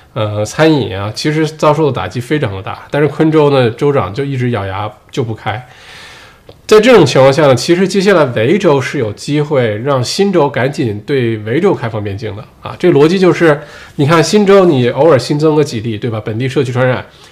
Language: Chinese